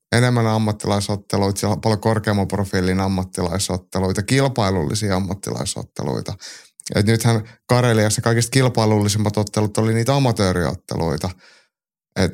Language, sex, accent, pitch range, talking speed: Finnish, male, native, 100-120 Hz, 85 wpm